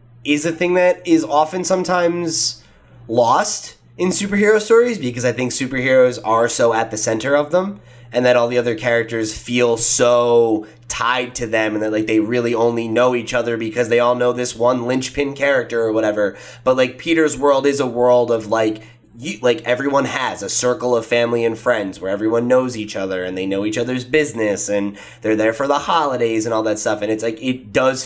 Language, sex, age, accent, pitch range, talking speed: English, male, 20-39, American, 110-130 Hz, 205 wpm